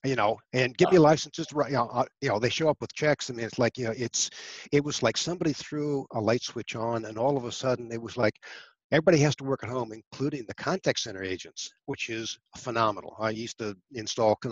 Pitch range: 115-140 Hz